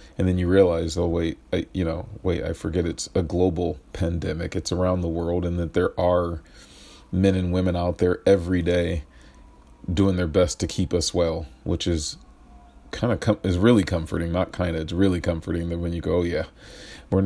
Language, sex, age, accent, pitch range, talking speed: English, male, 40-59, American, 85-95 Hz, 195 wpm